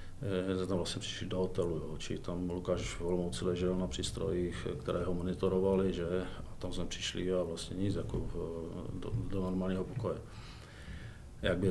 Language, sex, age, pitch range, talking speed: Czech, male, 40-59, 90-110 Hz, 170 wpm